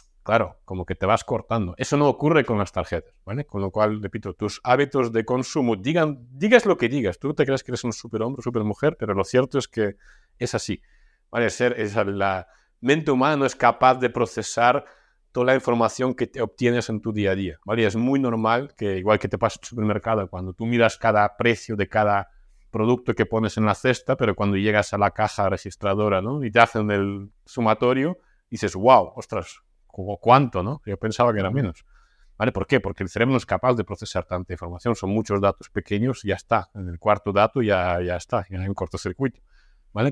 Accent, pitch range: Spanish, 100-125 Hz